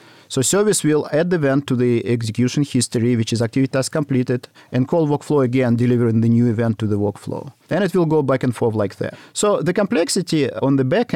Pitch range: 110-145 Hz